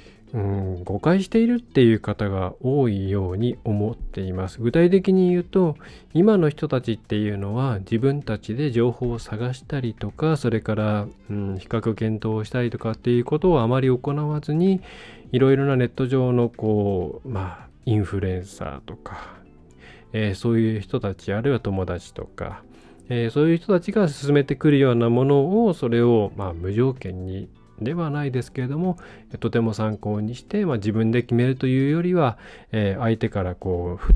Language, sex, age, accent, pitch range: Japanese, male, 20-39, native, 105-140 Hz